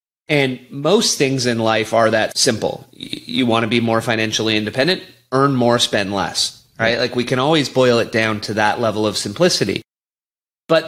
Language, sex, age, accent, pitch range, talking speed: English, male, 30-49, American, 115-150 Hz, 180 wpm